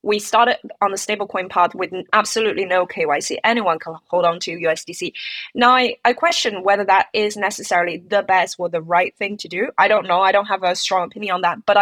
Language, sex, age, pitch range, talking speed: English, female, 20-39, 175-215 Hz, 225 wpm